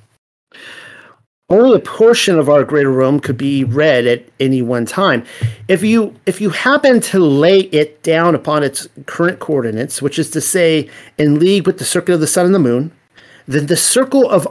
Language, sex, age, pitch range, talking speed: English, male, 40-59, 135-175 Hz, 190 wpm